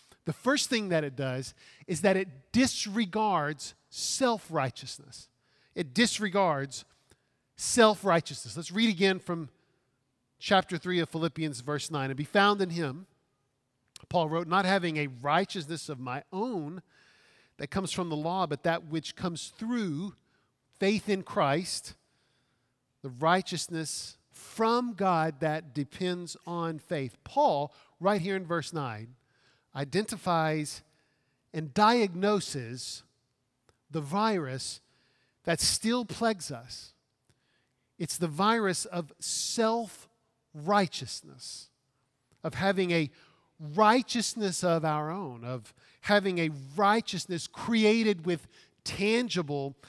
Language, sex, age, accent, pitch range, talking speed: English, male, 50-69, American, 140-200 Hz, 110 wpm